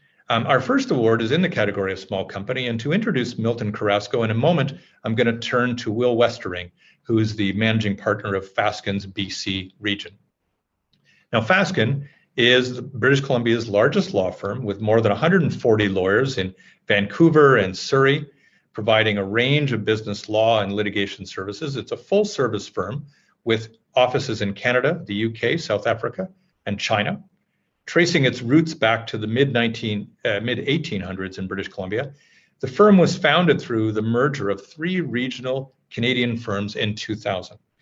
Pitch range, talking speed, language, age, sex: 105-140 Hz, 160 wpm, English, 40-59, male